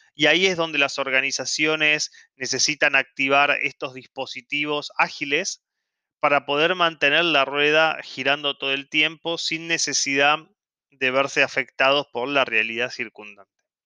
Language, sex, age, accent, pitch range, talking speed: Spanish, male, 30-49, Argentinian, 130-155 Hz, 125 wpm